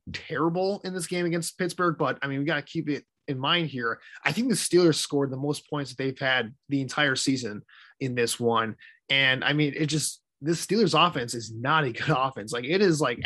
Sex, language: male, English